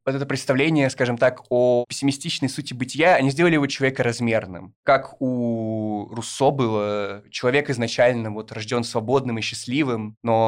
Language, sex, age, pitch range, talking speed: Russian, male, 20-39, 110-130 Hz, 150 wpm